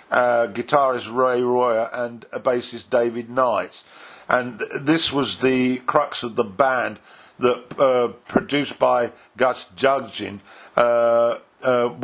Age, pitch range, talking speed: 50-69, 115-130 Hz, 130 wpm